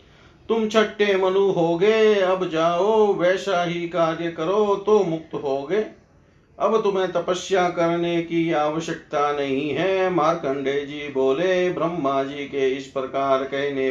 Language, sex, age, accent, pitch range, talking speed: Hindi, male, 50-69, native, 130-170 Hz, 125 wpm